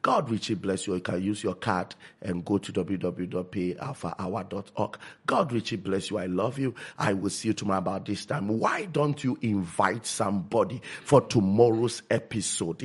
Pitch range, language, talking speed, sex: 95-130 Hz, English, 170 wpm, male